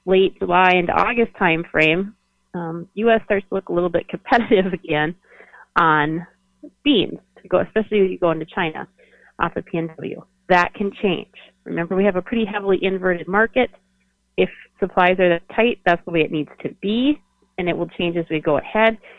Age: 30-49